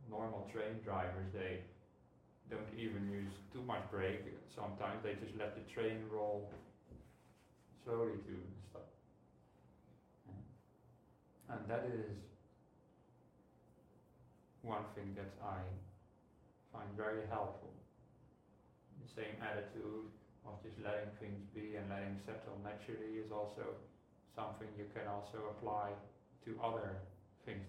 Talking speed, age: 115 wpm, 40-59